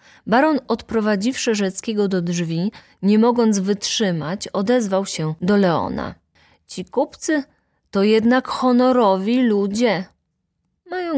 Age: 30-49